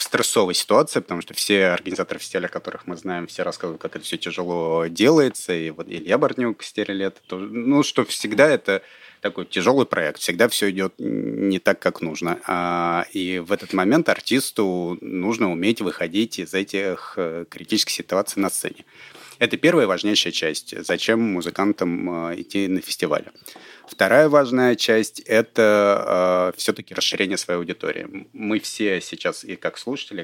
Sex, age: male, 30-49